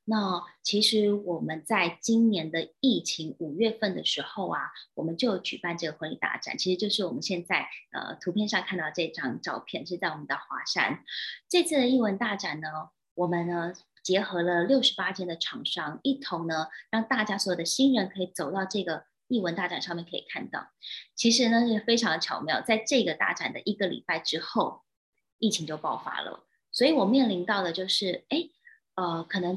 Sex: female